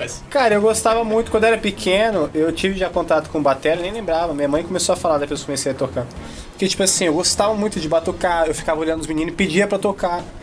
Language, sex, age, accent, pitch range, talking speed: Portuguese, male, 20-39, Brazilian, 140-200 Hz, 240 wpm